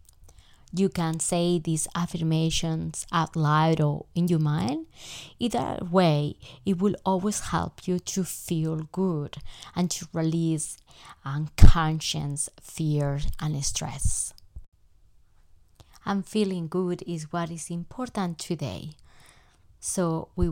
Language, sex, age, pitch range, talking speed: English, female, 20-39, 145-175 Hz, 110 wpm